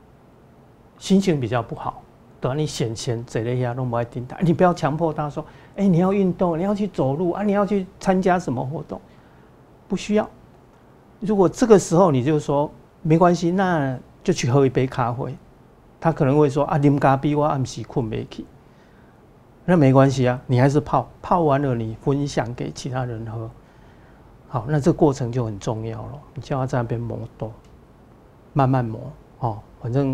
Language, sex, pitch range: Chinese, male, 125-160 Hz